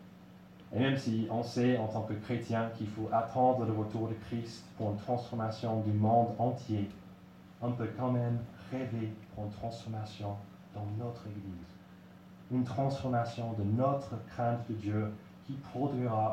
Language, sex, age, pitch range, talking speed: French, male, 30-49, 95-120 Hz, 155 wpm